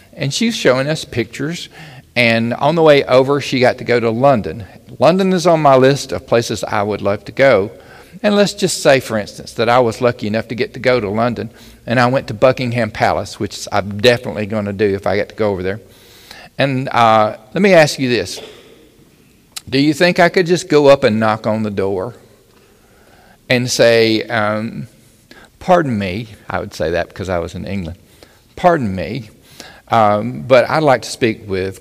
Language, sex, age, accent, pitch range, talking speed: English, male, 50-69, American, 100-130 Hz, 200 wpm